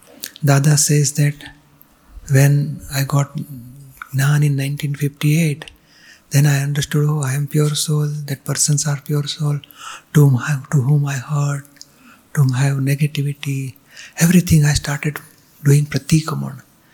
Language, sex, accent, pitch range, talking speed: Gujarati, male, native, 140-155 Hz, 140 wpm